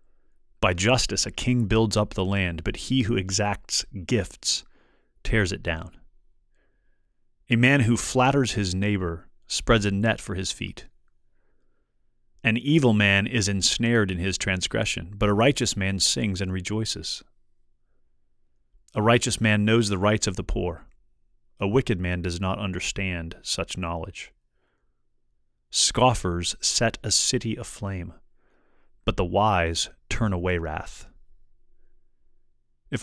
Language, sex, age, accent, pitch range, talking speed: English, male, 30-49, American, 90-115 Hz, 130 wpm